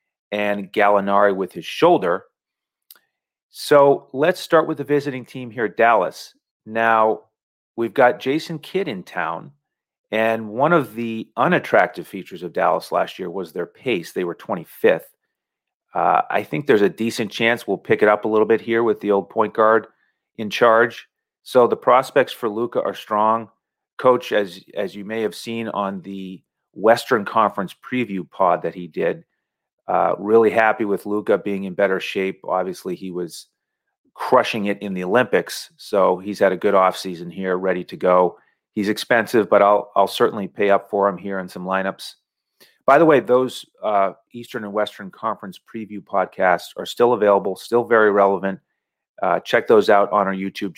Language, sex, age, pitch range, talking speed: English, male, 40-59, 95-115 Hz, 175 wpm